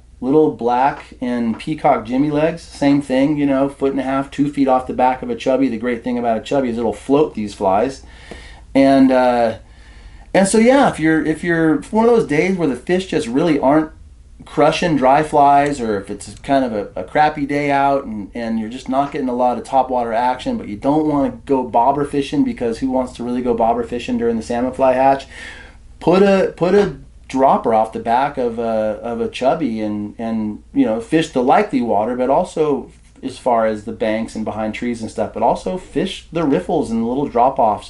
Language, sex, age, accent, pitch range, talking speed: English, male, 30-49, American, 110-150 Hz, 220 wpm